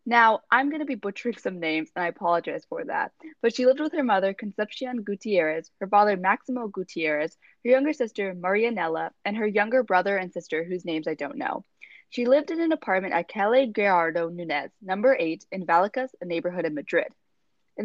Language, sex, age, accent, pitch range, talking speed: English, female, 20-39, American, 175-250 Hz, 195 wpm